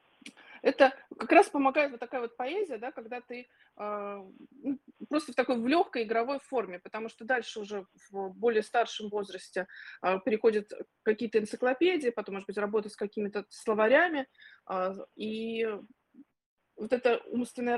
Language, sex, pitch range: Russian, female, 225-290 Hz